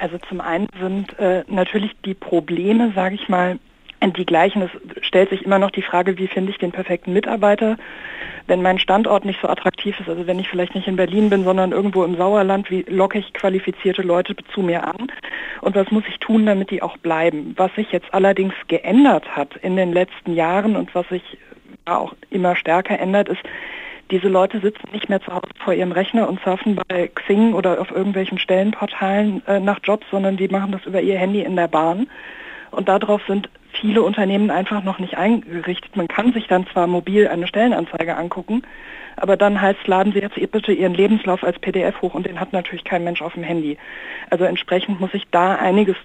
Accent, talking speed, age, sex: German, 200 wpm, 50-69, female